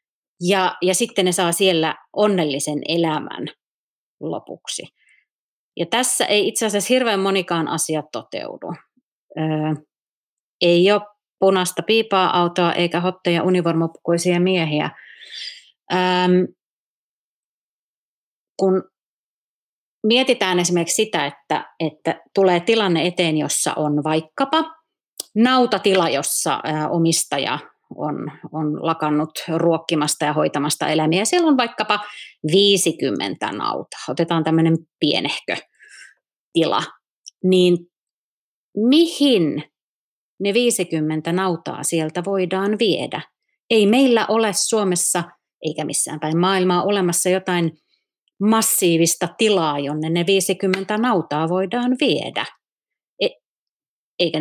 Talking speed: 95 wpm